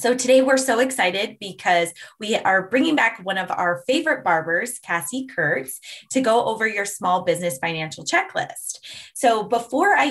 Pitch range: 180-240 Hz